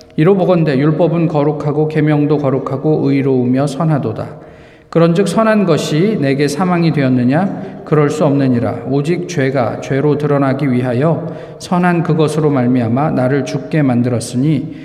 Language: Korean